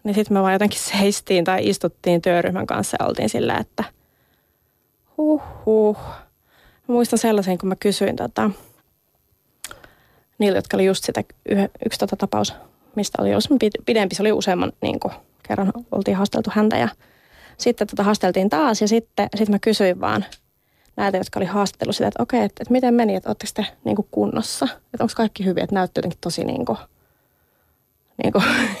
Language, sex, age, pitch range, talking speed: Finnish, female, 20-39, 195-240 Hz, 160 wpm